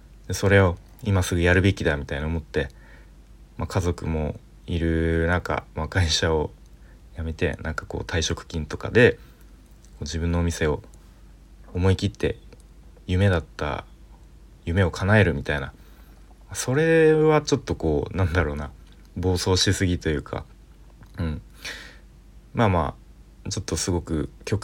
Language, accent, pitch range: Japanese, native, 75-100 Hz